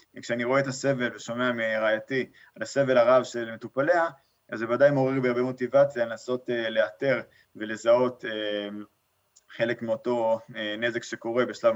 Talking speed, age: 135 wpm, 20-39